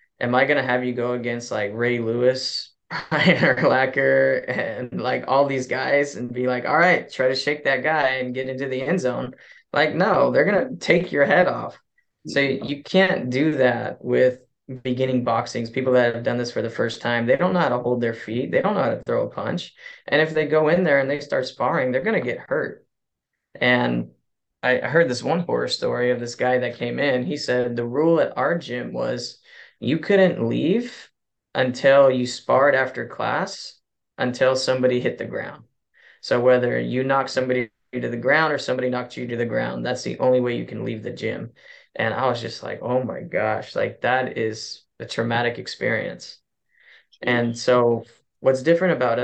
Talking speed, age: 205 wpm, 20-39